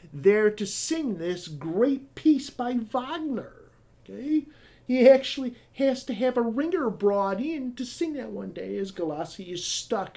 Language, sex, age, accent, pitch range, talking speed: English, male, 50-69, American, 170-260 Hz, 160 wpm